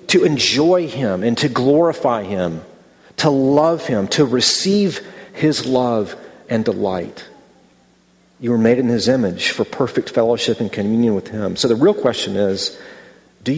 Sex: male